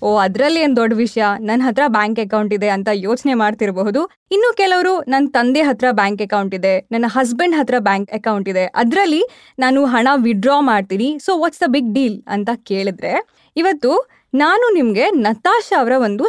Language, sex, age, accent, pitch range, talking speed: Kannada, female, 20-39, native, 220-310 Hz, 165 wpm